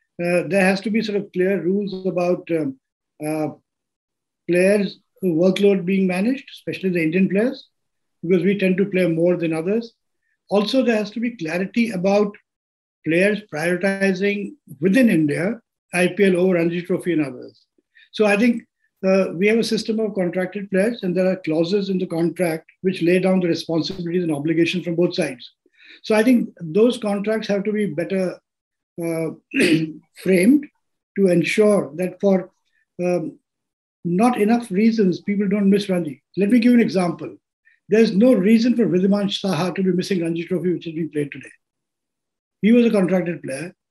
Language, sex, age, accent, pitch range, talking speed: English, male, 50-69, Indian, 175-215 Hz, 165 wpm